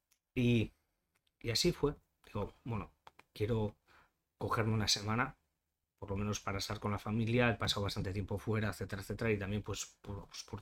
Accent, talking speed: Spanish, 170 wpm